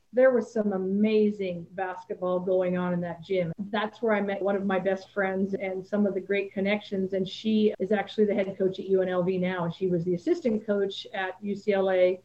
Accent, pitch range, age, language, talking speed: American, 195-230 Hz, 50-69, English, 210 wpm